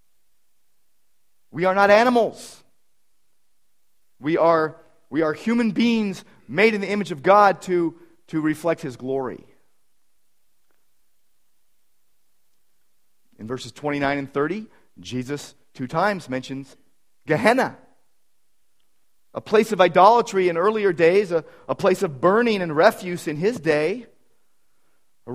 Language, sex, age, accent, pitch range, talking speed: English, male, 40-59, American, 140-195 Hz, 115 wpm